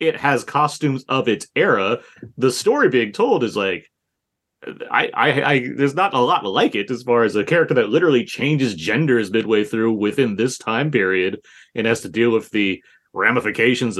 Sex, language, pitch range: male, English, 95-120 Hz